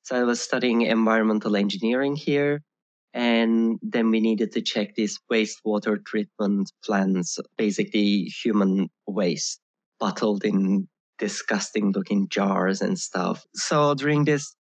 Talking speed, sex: 125 wpm, male